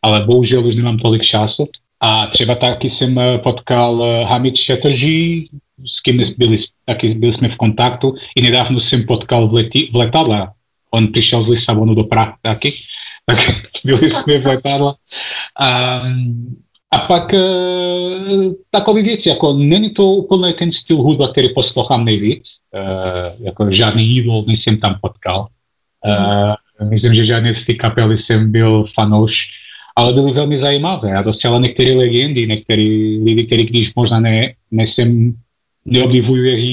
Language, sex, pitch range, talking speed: Czech, male, 110-125 Hz, 145 wpm